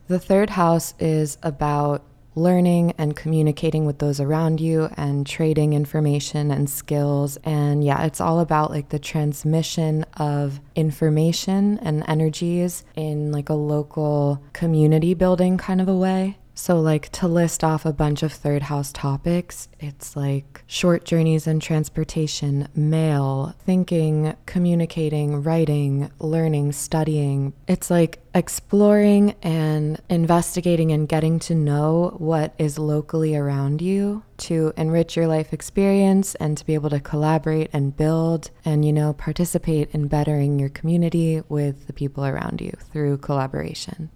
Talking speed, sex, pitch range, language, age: 140 wpm, female, 145-165 Hz, English, 20-39